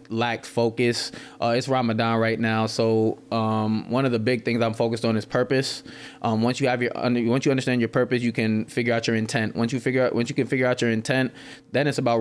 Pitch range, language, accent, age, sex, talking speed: 110-125 Hz, English, American, 20-39, male, 240 wpm